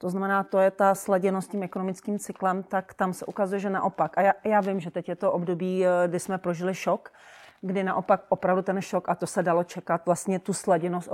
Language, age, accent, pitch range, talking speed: Czech, 40-59, native, 170-190 Hz, 225 wpm